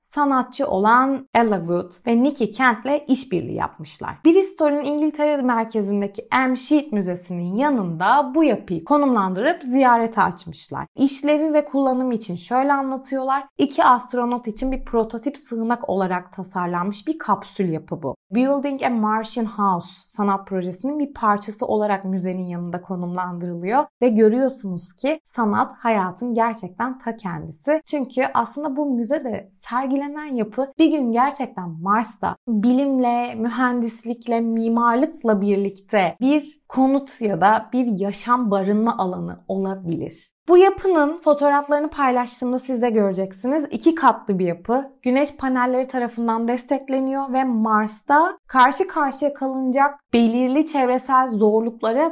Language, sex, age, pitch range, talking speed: Turkish, female, 30-49, 205-285 Hz, 125 wpm